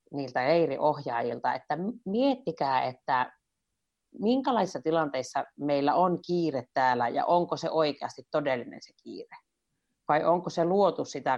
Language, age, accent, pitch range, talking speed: Finnish, 30-49, native, 135-175 Hz, 120 wpm